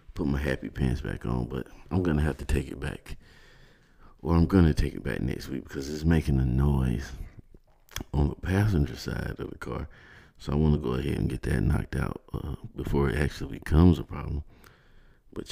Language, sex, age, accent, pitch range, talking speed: English, male, 50-69, American, 70-85 Hz, 205 wpm